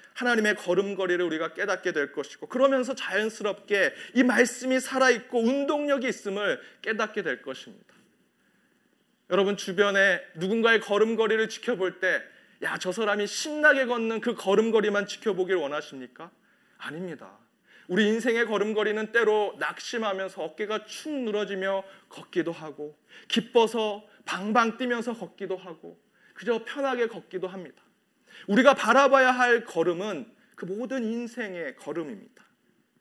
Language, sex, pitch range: Korean, male, 190-245 Hz